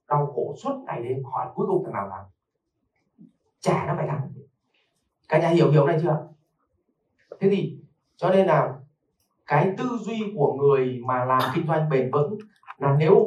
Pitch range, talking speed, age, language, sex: 135-170 Hz, 175 wpm, 30-49, Vietnamese, male